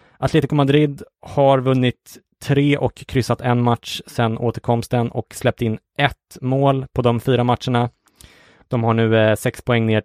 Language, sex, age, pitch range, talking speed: English, male, 20-39, 110-130 Hz, 160 wpm